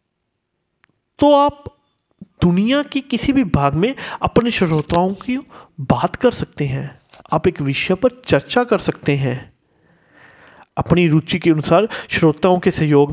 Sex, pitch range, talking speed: male, 155-250 Hz, 135 wpm